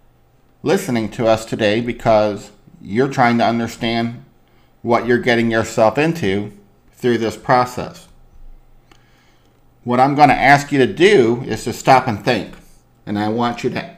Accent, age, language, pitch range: American, 50-69, English, 105-135 Hz